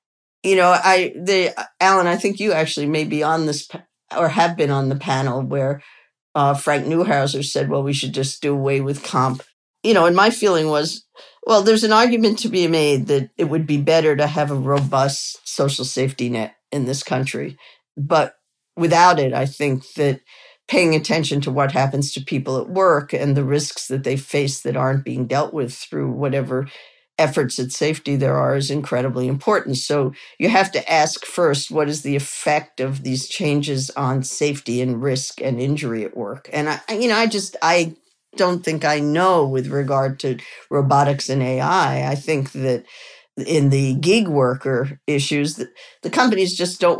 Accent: American